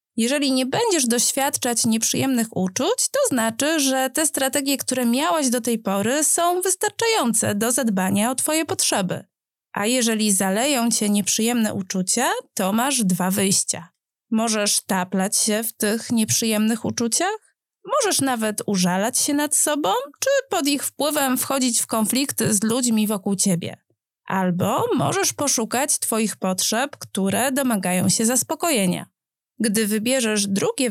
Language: Polish